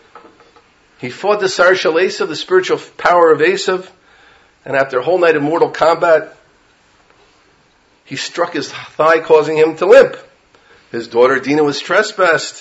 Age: 40-59